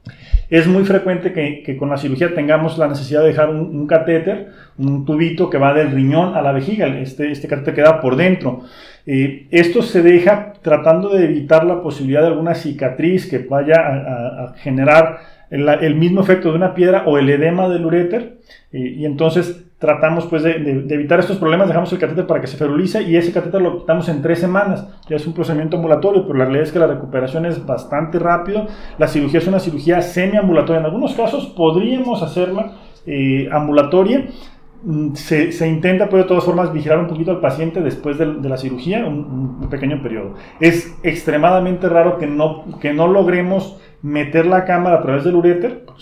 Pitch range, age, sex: 145-180 Hz, 30-49, male